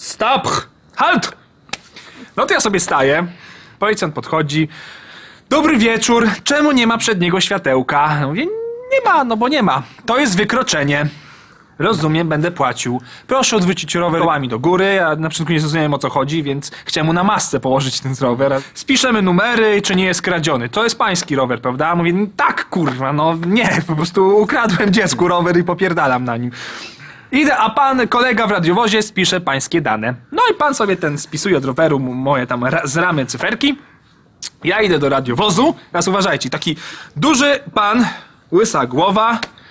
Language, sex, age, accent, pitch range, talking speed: Polish, male, 20-39, native, 145-230 Hz, 165 wpm